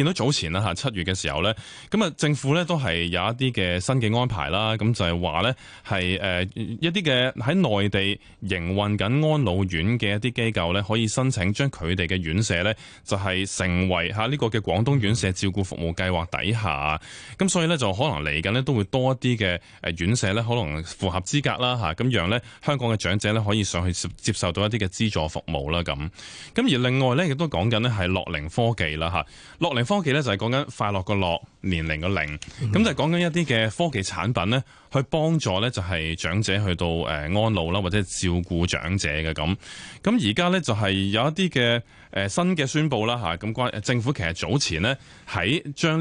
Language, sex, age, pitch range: Chinese, male, 20-39, 90-125 Hz